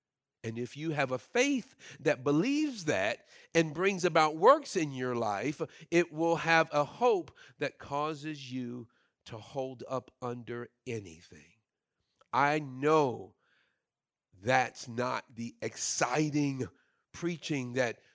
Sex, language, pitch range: male, English, 125-170 Hz